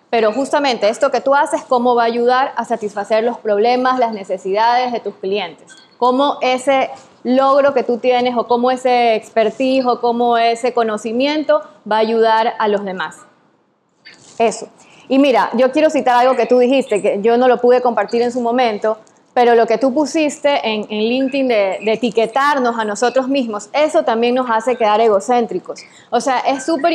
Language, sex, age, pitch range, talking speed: Spanish, female, 20-39, 225-270 Hz, 185 wpm